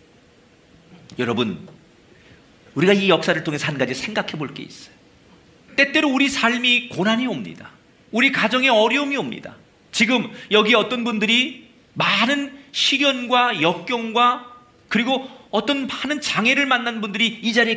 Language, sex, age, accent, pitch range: Korean, male, 40-59, native, 195-280 Hz